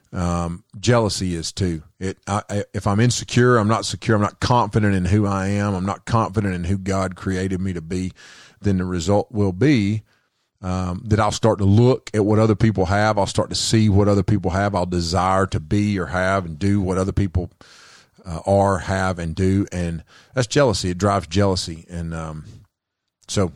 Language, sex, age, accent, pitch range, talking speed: English, male, 40-59, American, 95-110 Hz, 200 wpm